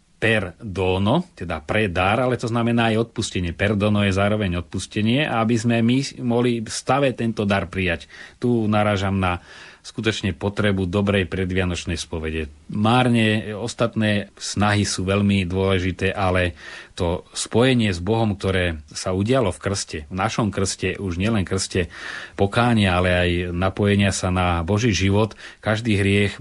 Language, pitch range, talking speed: Slovak, 95-110 Hz, 140 wpm